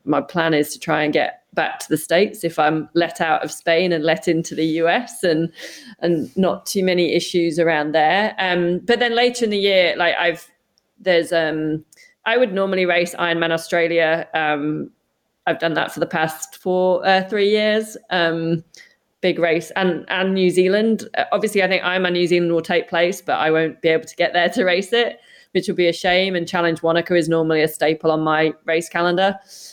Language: English